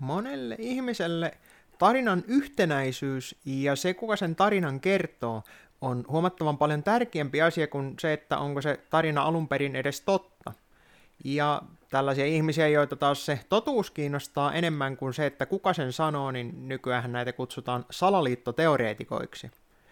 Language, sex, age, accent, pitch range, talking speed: Finnish, male, 20-39, native, 135-180 Hz, 135 wpm